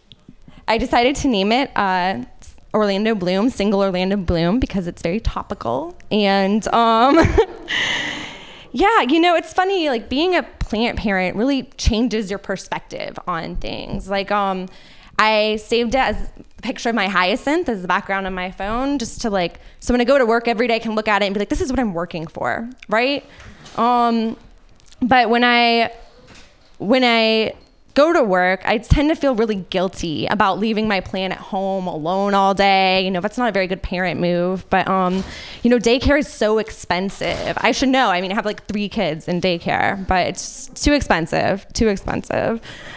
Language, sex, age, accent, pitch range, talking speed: English, female, 20-39, American, 195-245 Hz, 190 wpm